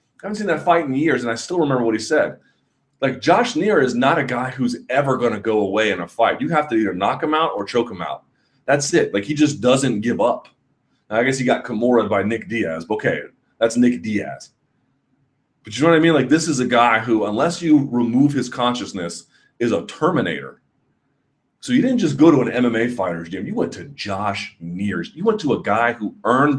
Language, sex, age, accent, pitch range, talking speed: English, male, 30-49, American, 105-140 Hz, 230 wpm